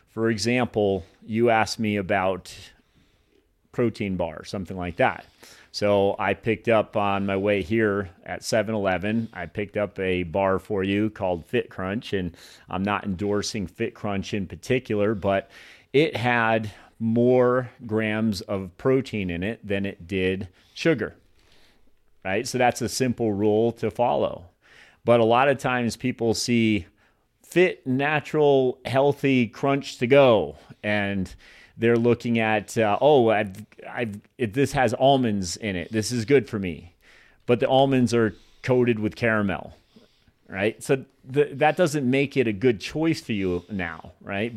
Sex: male